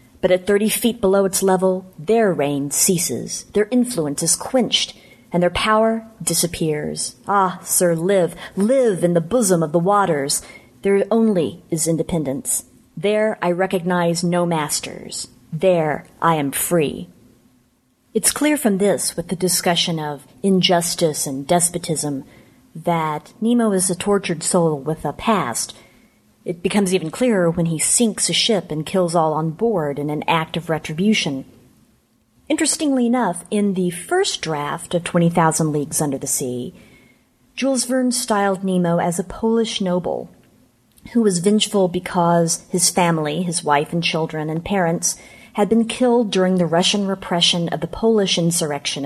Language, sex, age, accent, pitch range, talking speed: English, female, 40-59, American, 160-205 Hz, 150 wpm